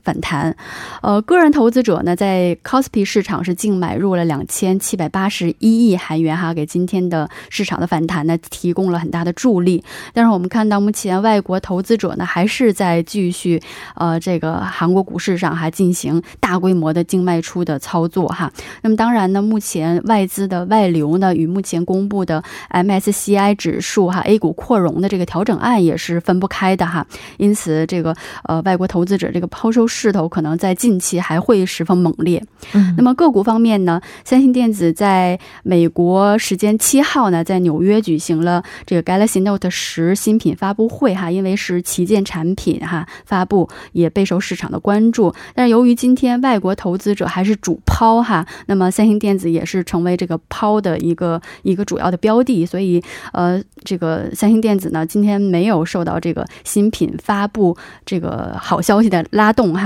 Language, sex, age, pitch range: Korean, female, 20-39, 170-210 Hz